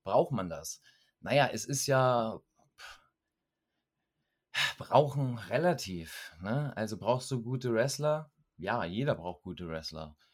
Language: German